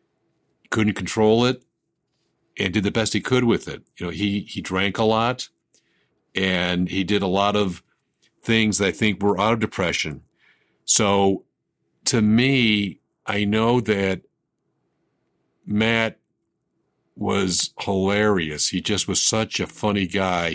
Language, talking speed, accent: English, 140 wpm, American